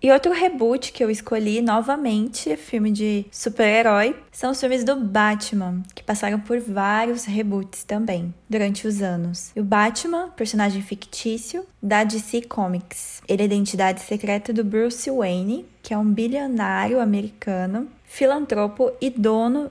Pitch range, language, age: 205-245 Hz, Portuguese, 20-39